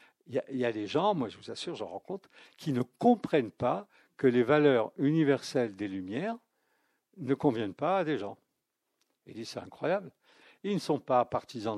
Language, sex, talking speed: French, male, 205 wpm